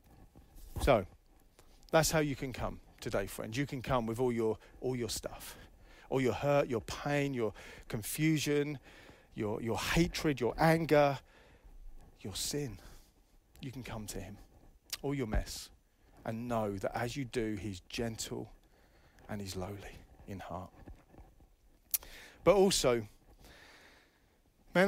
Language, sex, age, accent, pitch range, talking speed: English, male, 40-59, British, 110-155 Hz, 135 wpm